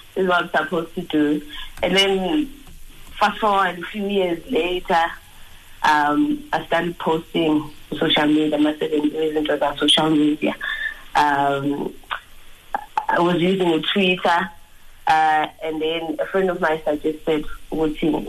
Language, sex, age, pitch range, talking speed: English, female, 30-49, 155-195 Hz, 140 wpm